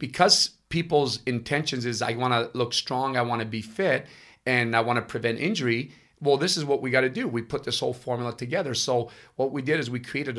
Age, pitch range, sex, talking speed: 30-49, 120-150 Hz, male, 235 wpm